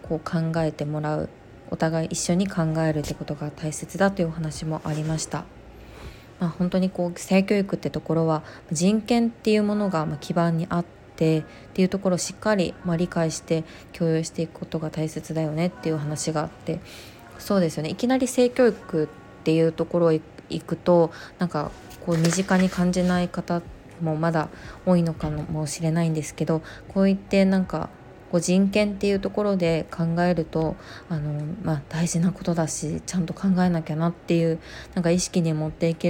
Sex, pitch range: female, 155-180 Hz